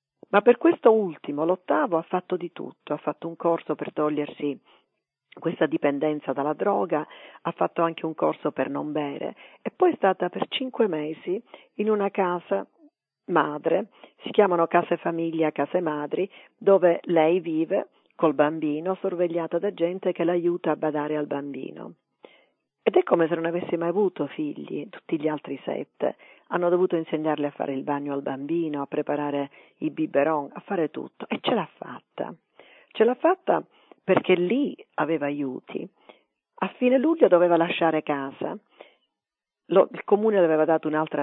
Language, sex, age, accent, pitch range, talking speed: Italian, female, 40-59, native, 155-195 Hz, 160 wpm